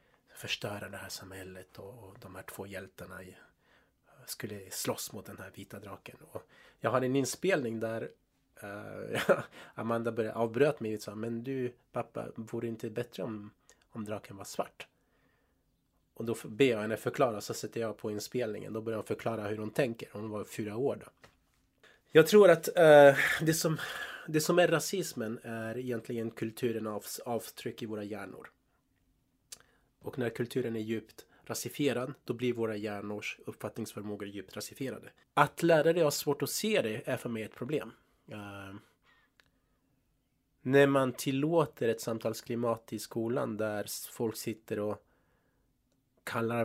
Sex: male